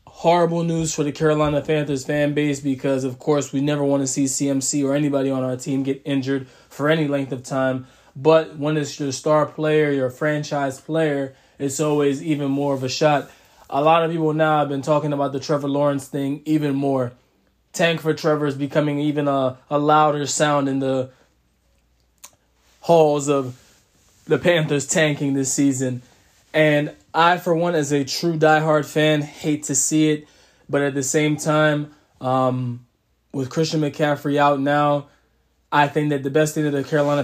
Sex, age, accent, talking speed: male, 20-39, American, 180 wpm